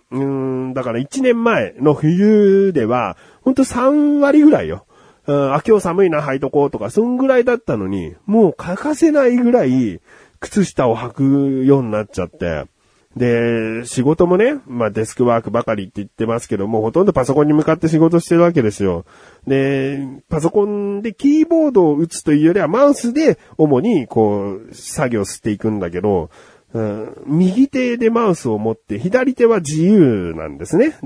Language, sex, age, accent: Japanese, male, 30-49, native